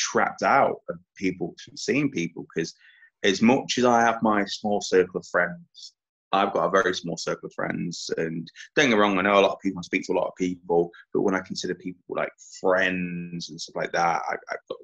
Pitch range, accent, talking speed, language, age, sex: 90-115 Hz, British, 225 wpm, English, 20-39, male